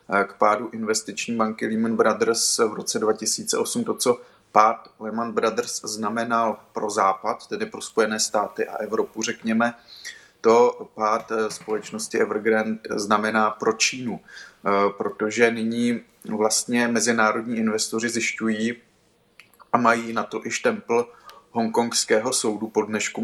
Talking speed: 120 wpm